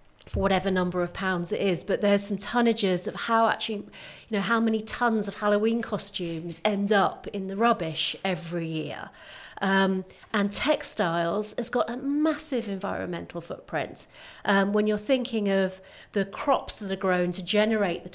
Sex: female